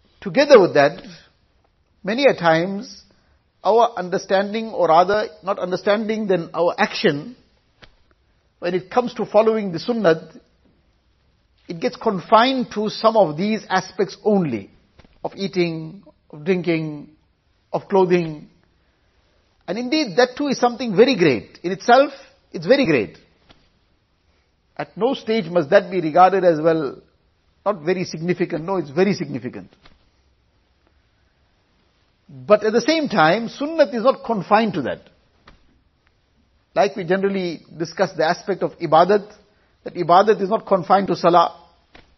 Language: English